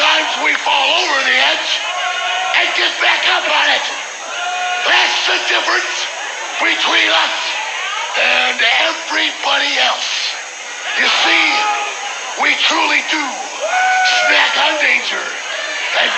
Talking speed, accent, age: 105 wpm, American, 50-69